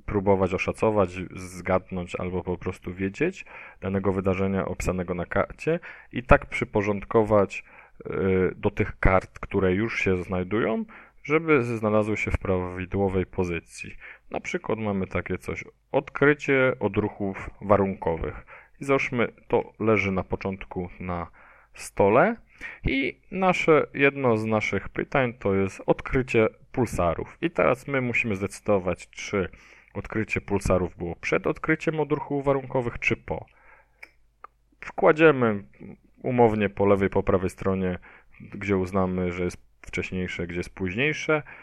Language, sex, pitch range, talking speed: Polish, male, 90-115 Hz, 120 wpm